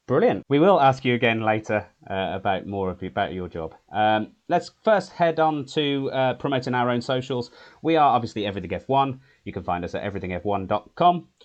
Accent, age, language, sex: British, 30-49, English, male